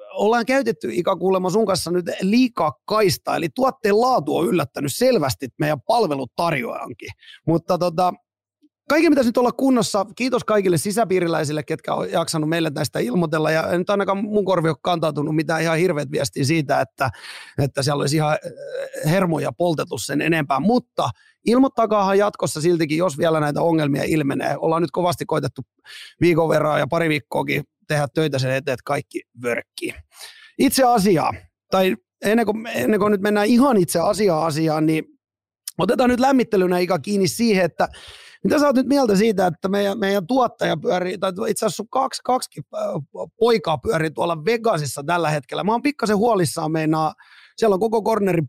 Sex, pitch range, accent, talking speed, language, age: male, 160-225 Hz, native, 160 wpm, Finnish, 30-49